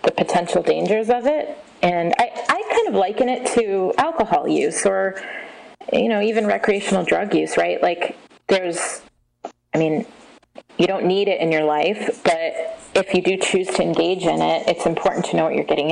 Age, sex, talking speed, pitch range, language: 30-49, female, 190 wpm, 160-215 Hz, English